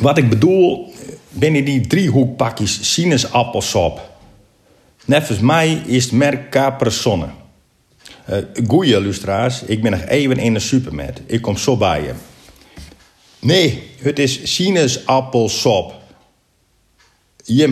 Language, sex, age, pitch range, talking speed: Dutch, male, 50-69, 95-125 Hz, 110 wpm